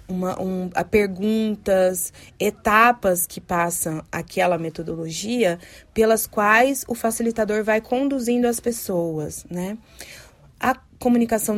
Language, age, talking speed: Portuguese, 20-39, 105 wpm